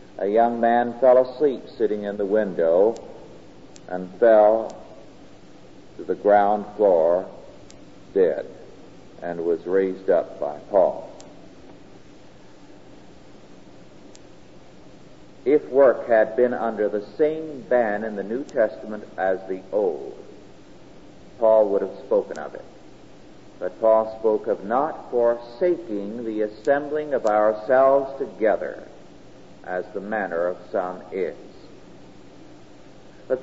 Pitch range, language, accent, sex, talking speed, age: 105-165 Hz, English, American, male, 110 wpm, 50-69